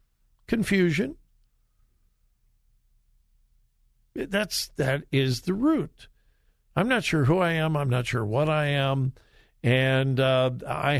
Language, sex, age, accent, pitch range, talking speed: English, male, 60-79, American, 130-175 Hz, 120 wpm